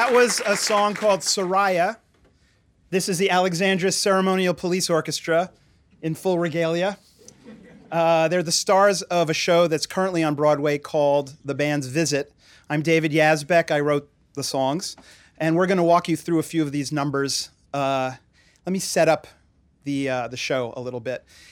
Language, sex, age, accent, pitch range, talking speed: English, male, 30-49, American, 130-170 Hz, 175 wpm